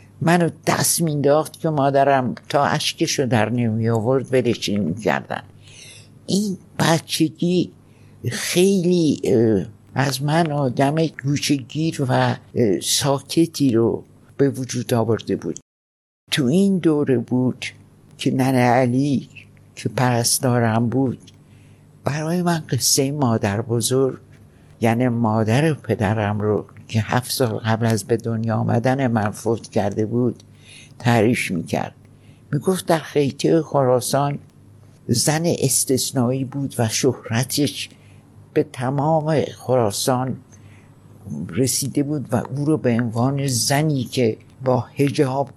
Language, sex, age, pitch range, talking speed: Persian, male, 60-79, 115-140 Hz, 110 wpm